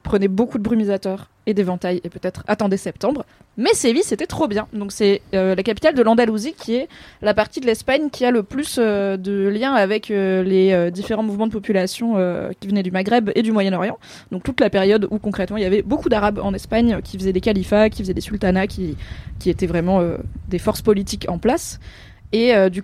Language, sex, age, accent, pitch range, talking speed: French, female, 20-39, French, 190-225 Hz, 225 wpm